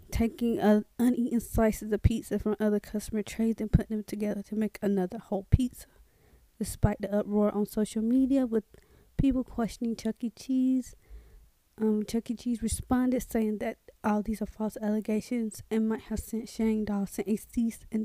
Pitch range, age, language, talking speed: 205-230 Hz, 20-39, English, 170 wpm